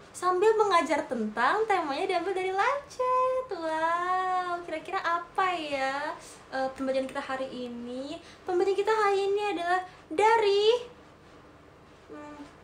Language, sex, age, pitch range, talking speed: Malay, female, 20-39, 250-375 Hz, 110 wpm